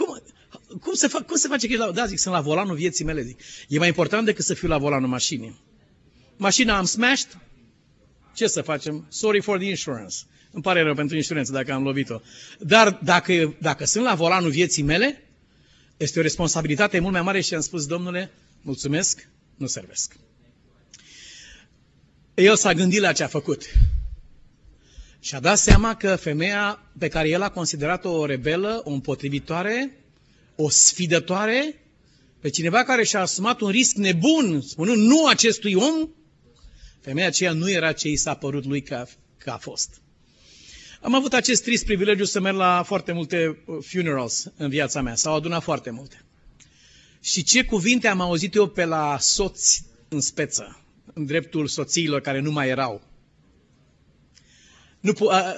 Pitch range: 145-200 Hz